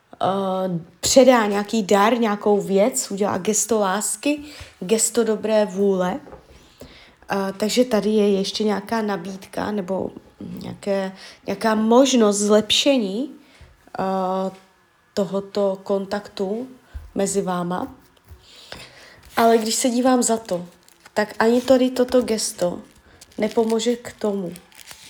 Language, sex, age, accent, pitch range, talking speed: Czech, female, 20-39, native, 195-240 Hz, 105 wpm